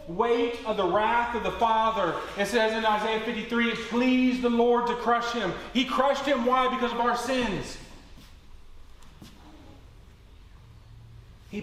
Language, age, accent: English, 30-49, American